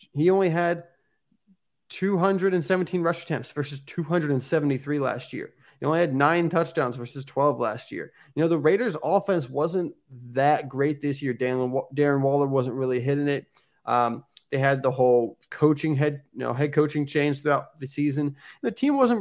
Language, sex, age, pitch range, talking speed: English, male, 20-39, 135-165 Hz, 165 wpm